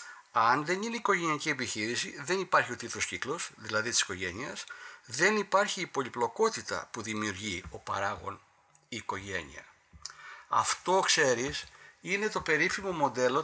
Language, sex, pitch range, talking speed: Greek, male, 120-175 Hz, 135 wpm